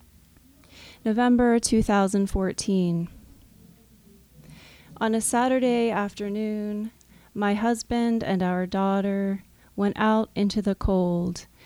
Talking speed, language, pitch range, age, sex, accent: 80 wpm, English, 165-210 Hz, 30-49, female, American